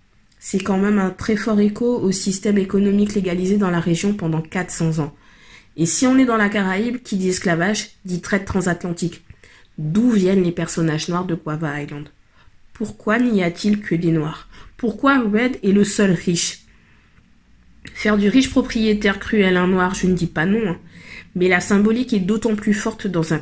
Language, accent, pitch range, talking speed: French, French, 170-210 Hz, 185 wpm